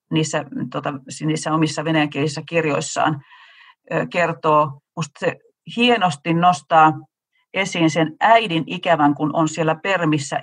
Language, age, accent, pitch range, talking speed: Finnish, 40-59, native, 155-200 Hz, 110 wpm